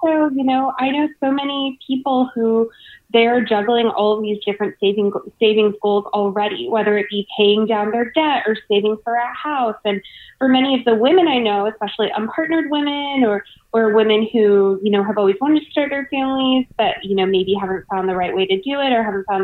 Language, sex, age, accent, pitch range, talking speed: English, female, 20-39, American, 200-250 Hz, 220 wpm